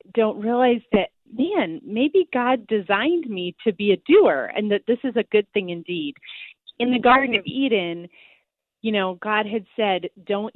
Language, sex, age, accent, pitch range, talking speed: English, female, 30-49, American, 190-270 Hz, 175 wpm